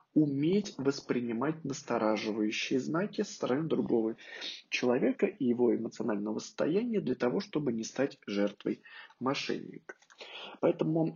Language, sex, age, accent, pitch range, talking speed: Russian, male, 20-39, native, 115-150 Hz, 110 wpm